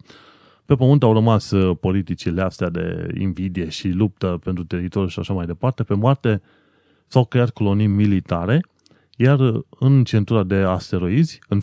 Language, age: Romanian, 30-49